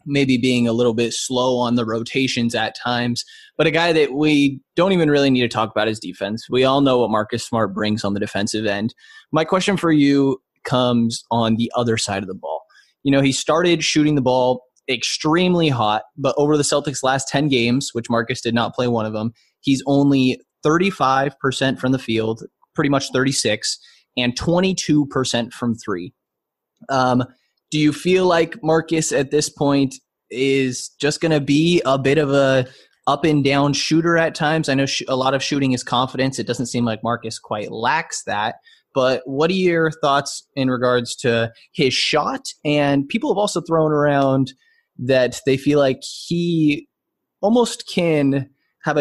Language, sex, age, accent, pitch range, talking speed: English, male, 20-39, American, 120-150 Hz, 180 wpm